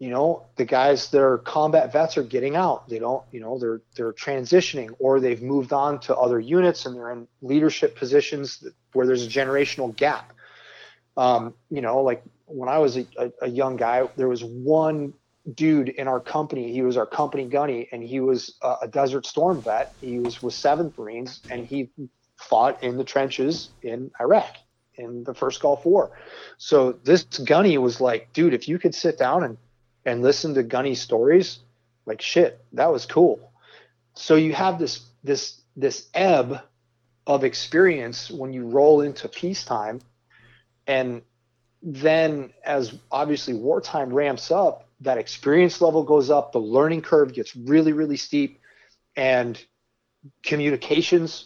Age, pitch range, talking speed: 30-49, 120-150 Hz, 165 wpm